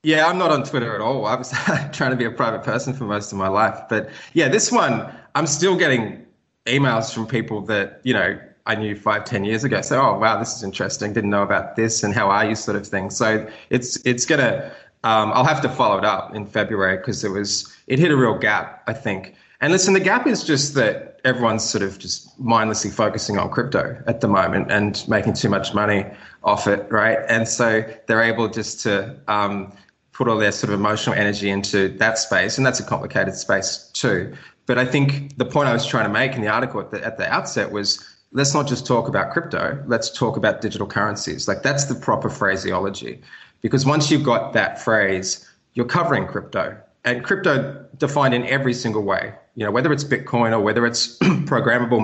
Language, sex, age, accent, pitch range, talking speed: English, male, 20-39, Australian, 105-130 Hz, 215 wpm